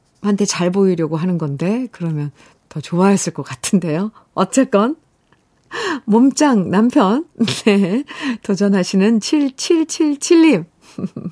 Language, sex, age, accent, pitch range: Korean, female, 50-69, native, 175-255 Hz